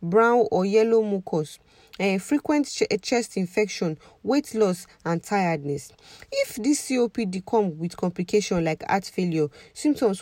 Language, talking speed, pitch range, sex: English, 135 wpm, 170-215 Hz, female